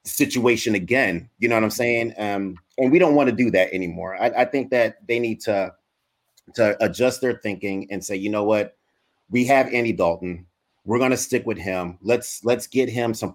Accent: American